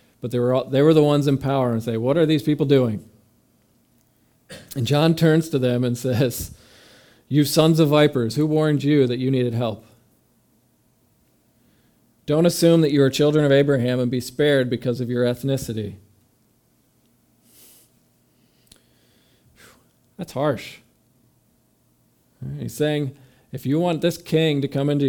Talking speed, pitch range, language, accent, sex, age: 155 wpm, 120-145 Hz, English, American, male, 40-59